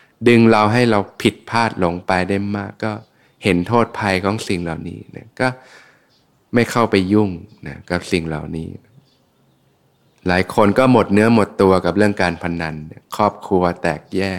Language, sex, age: Thai, male, 20-39